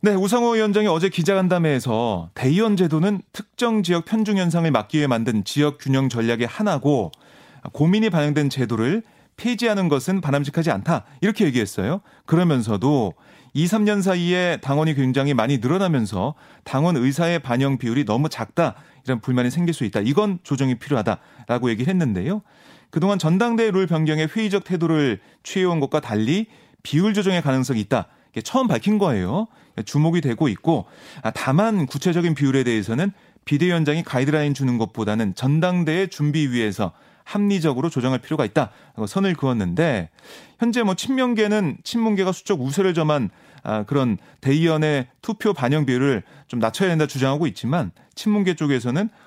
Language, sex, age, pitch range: Korean, male, 30-49, 135-195 Hz